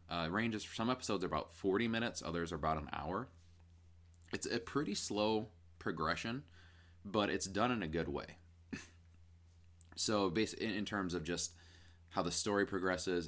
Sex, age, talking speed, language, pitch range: male, 20-39, 165 wpm, English, 80-95 Hz